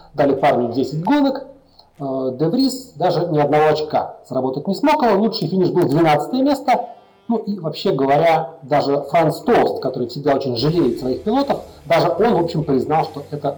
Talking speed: 160 wpm